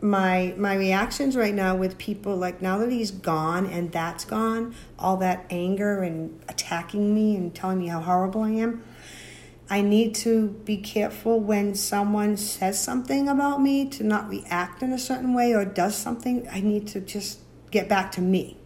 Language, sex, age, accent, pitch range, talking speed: English, female, 40-59, American, 165-210 Hz, 185 wpm